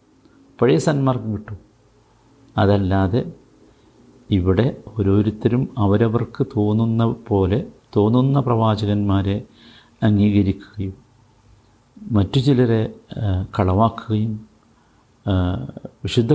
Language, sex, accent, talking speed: Malayalam, male, native, 60 wpm